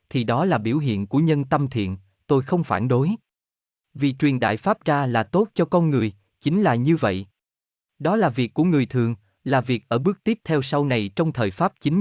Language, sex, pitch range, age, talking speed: Vietnamese, male, 110-160 Hz, 20-39, 225 wpm